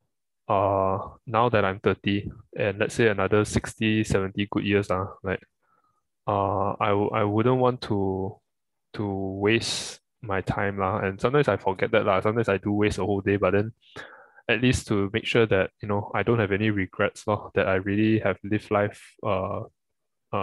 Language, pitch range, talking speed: English, 95-110 Hz, 190 wpm